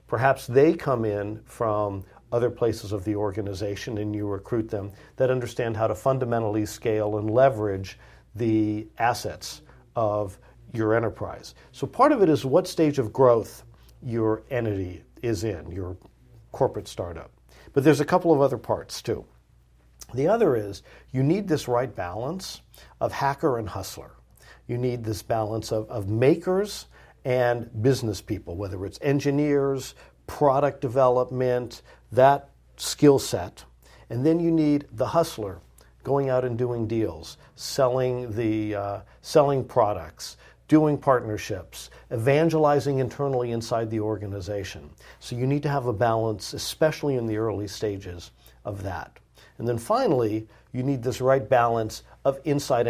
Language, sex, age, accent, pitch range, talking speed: English, male, 50-69, American, 105-135 Hz, 145 wpm